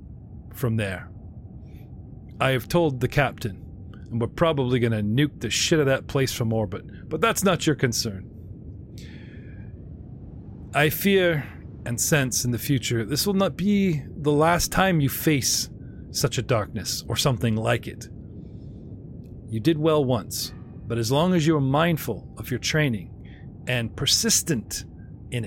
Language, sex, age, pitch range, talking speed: English, male, 40-59, 100-130 Hz, 155 wpm